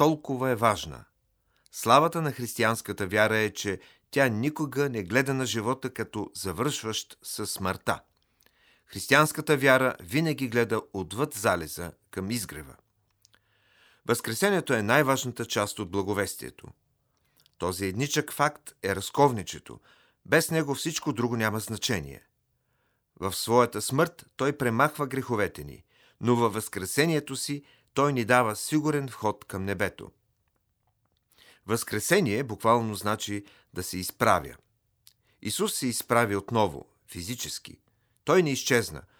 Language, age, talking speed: Bulgarian, 40-59, 115 wpm